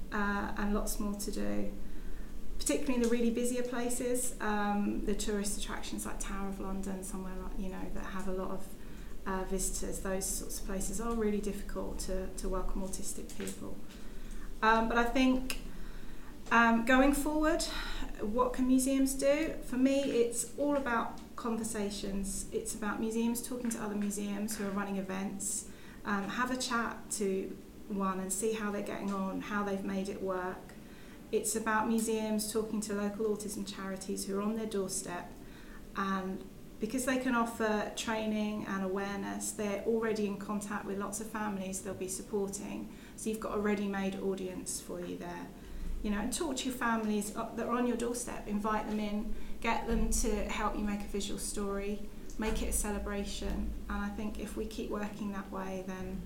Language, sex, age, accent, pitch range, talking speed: English, female, 30-49, British, 195-230 Hz, 175 wpm